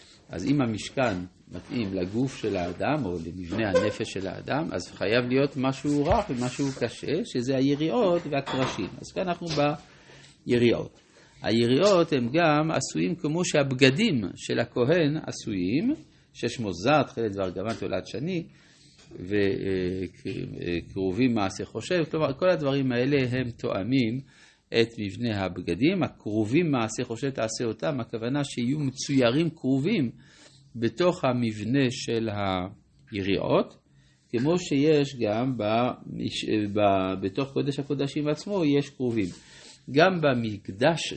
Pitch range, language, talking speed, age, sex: 105-145 Hz, Hebrew, 120 wpm, 50-69, male